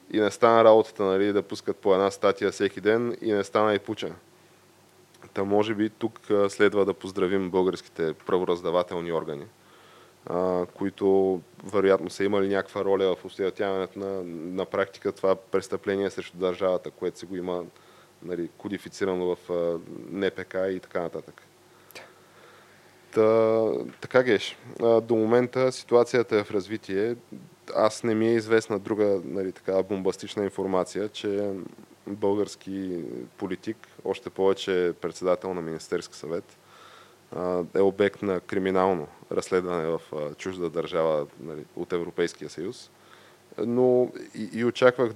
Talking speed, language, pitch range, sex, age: 130 wpm, Bulgarian, 95-110 Hz, male, 20-39